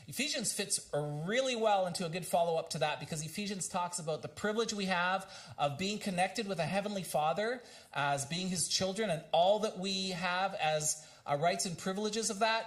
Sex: male